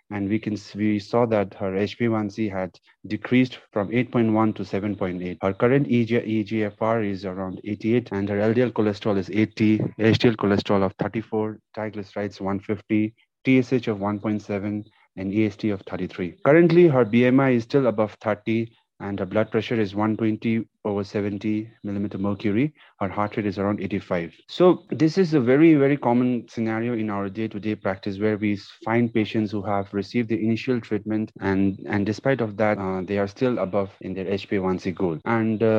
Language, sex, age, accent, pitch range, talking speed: English, male, 30-49, Indian, 100-115 Hz, 170 wpm